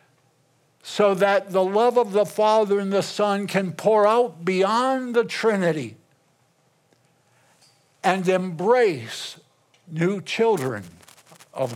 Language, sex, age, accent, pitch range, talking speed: English, male, 60-79, American, 140-195 Hz, 105 wpm